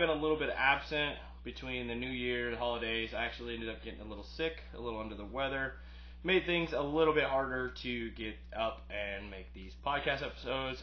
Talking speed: 210 wpm